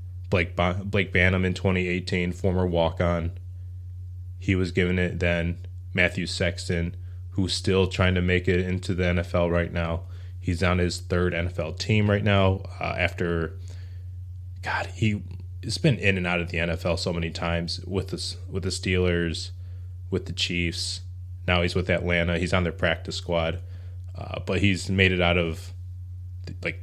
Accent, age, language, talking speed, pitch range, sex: American, 20-39, English, 160 wpm, 85-90 Hz, male